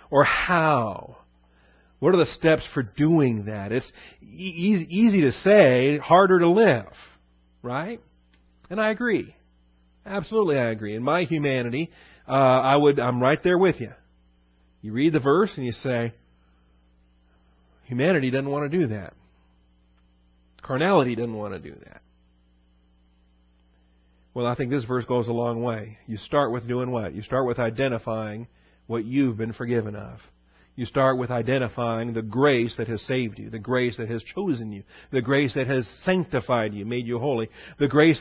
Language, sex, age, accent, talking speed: English, male, 40-59, American, 165 wpm